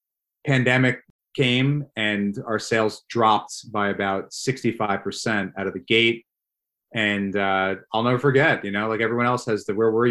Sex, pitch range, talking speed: male, 105-120 Hz, 160 wpm